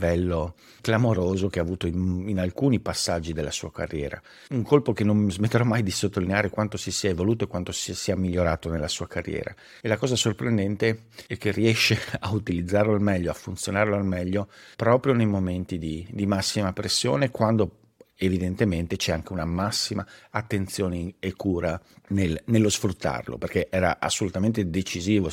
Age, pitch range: 50-69, 90-105 Hz